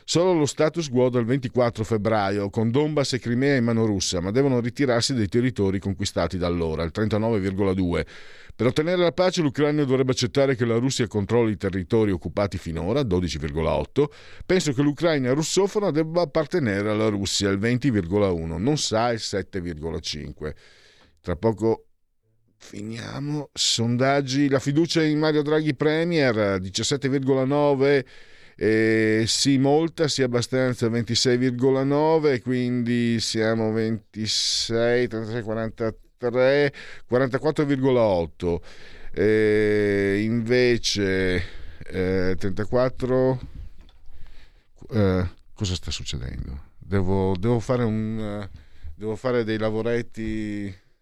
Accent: native